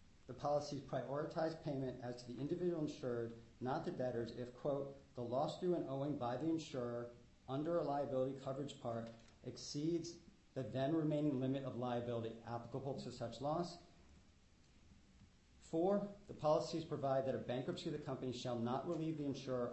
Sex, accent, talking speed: male, American, 160 wpm